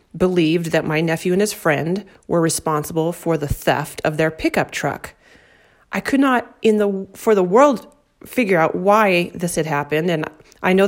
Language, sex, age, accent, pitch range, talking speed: English, female, 30-49, American, 160-205 Hz, 180 wpm